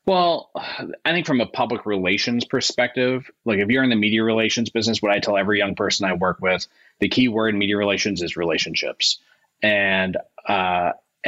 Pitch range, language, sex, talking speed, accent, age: 95-110 Hz, English, male, 185 wpm, American, 30-49